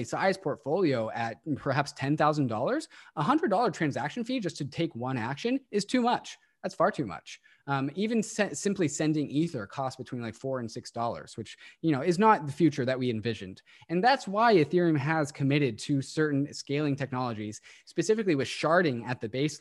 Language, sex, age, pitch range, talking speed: English, male, 20-39, 125-160 Hz, 175 wpm